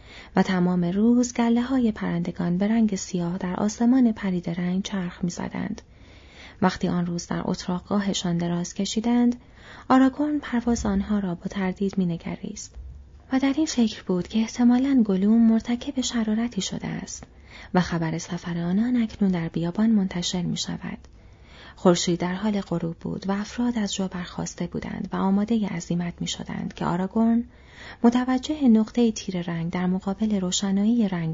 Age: 30-49